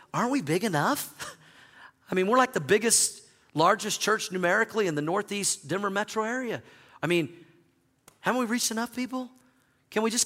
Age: 40-59